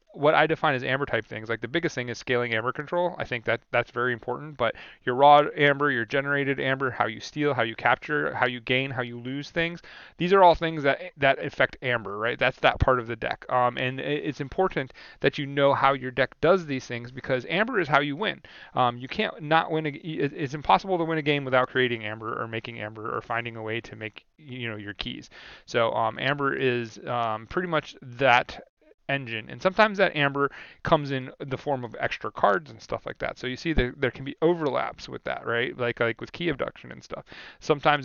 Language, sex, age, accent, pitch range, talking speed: English, male, 30-49, American, 120-145 Hz, 230 wpm